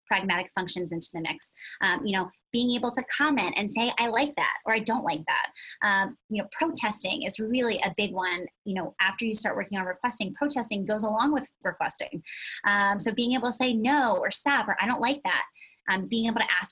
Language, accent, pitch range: English, American, 205-280 Hz